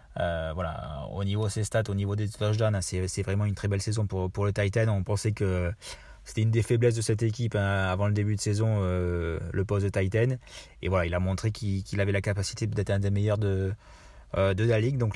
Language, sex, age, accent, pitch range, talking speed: French, male, 20-39, French, 90-110 Hz, 255 wpm